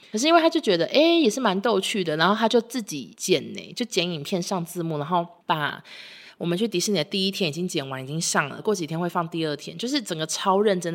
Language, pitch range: Chinese, 160-215 Hz